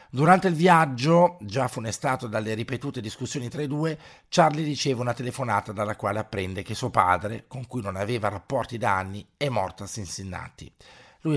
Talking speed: 175 wpm